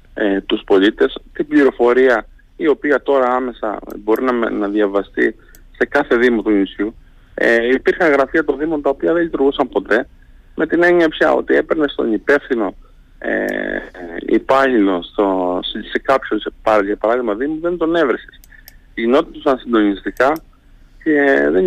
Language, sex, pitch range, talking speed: Greek, male, 105-135 Hz, 150 wpm